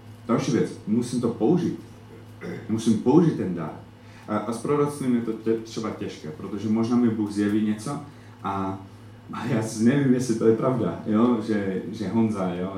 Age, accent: 30-49, native